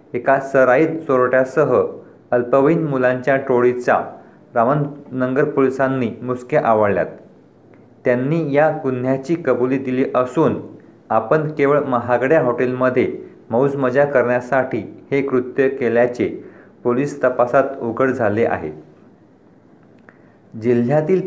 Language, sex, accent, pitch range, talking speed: Marathi, male, native, 120-140 Hz, 95 wpm